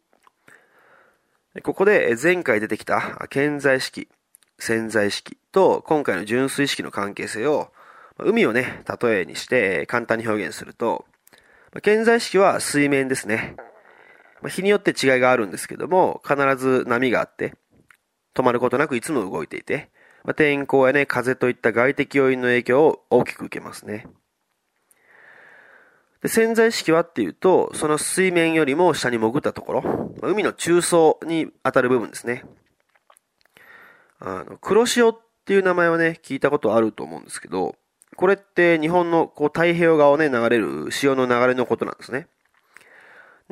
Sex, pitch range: male, 130-205 Hz